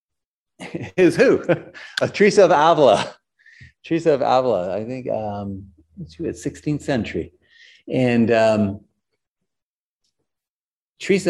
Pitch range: 95-125 Hz